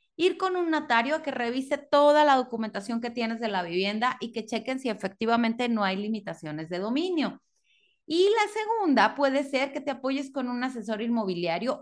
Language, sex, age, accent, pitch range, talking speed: Spanish, female, 30-49, Mexican, 225-290 Hz, 190 wpm